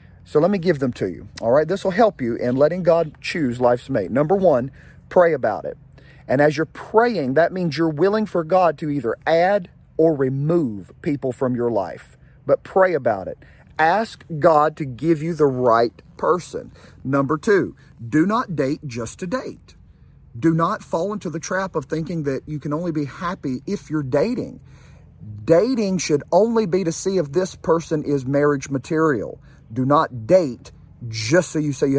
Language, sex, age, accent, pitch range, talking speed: English, male, 40-59, American, 135-185 Hz, 190 wpm